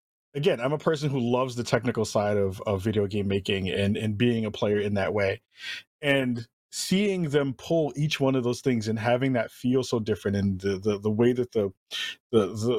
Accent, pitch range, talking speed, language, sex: American, 105-135 Hz, 210 wpm, English, male